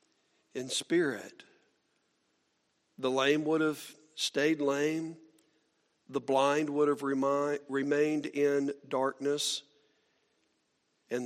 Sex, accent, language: male, American, English